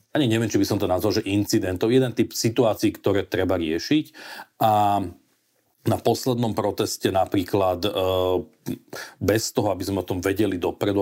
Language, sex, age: Slovak, male, 40-59